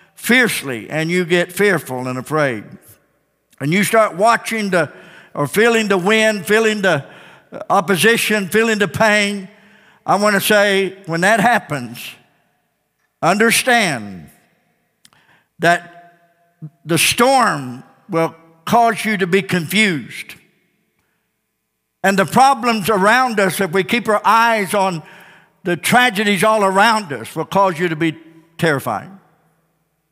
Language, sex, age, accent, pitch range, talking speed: English, male, 60-79, American, 175-250 Hz, 120 wpm